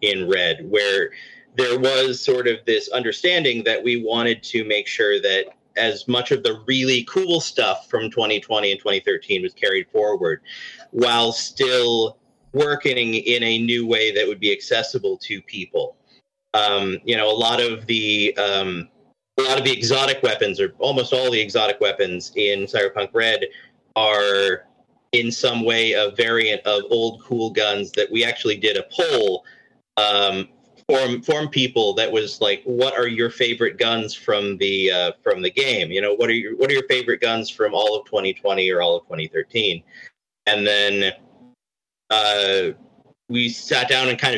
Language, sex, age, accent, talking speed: English, male, 30-49, American, 170 wpm